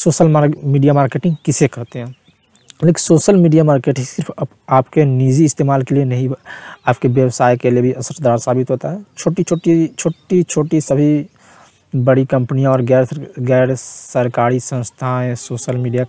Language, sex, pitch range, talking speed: Hindi, male, 125-160 Hz, 160 wpm